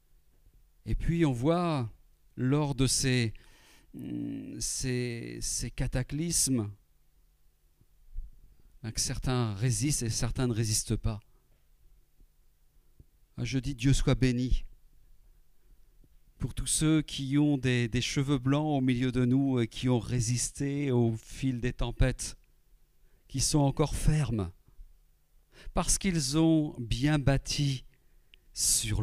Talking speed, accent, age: 110 wpm, French, 50-69